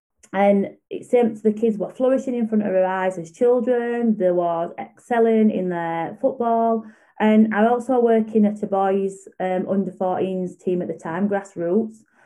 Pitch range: 185-220 Hz